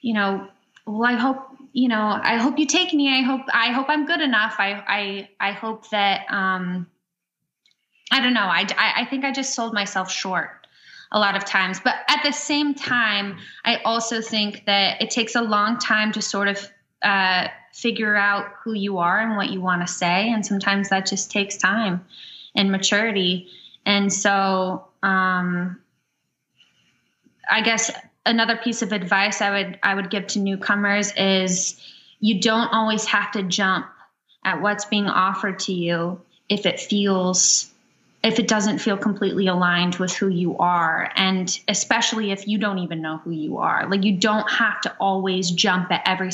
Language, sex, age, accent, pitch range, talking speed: English, female, 20-39, American, 190-225 Hz, 180 wpm